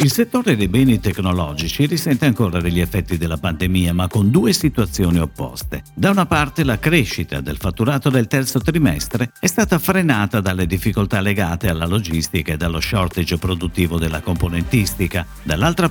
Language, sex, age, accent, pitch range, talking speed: Italian, male, 50-69, native, 90-140 Hz, 155 wpm